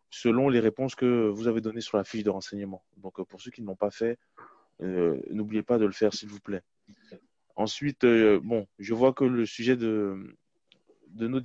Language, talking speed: English, 210 wpm